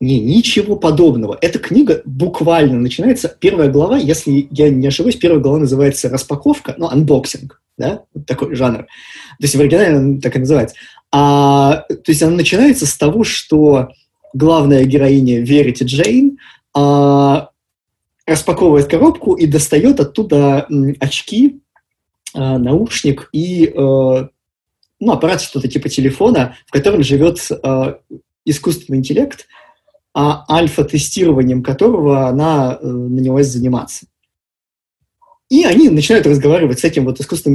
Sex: male